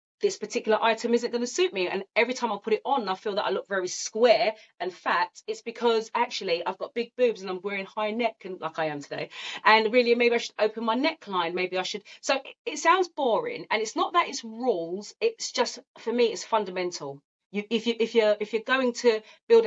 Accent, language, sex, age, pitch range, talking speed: British, English, female, 30-49, 180-240 Hz, 240 wpm